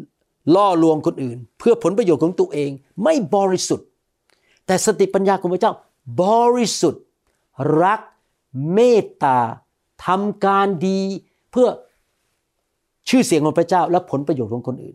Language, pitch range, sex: Thai, 155-200 Hz, male